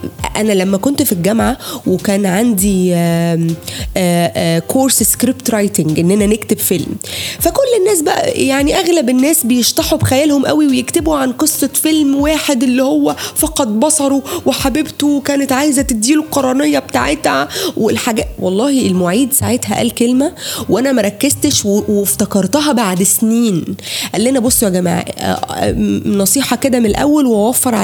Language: Arabic